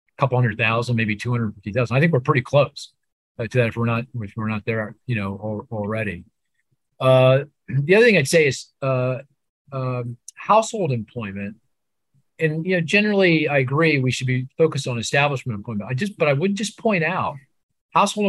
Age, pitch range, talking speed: 50-69, 115-145 Hz, 195 wpm